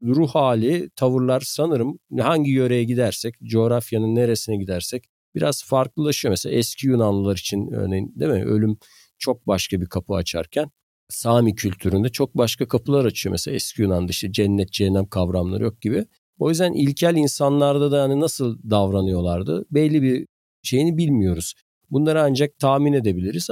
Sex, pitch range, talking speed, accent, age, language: male, 100-135 Hz, 145 wpm, native, 50-69, Turkish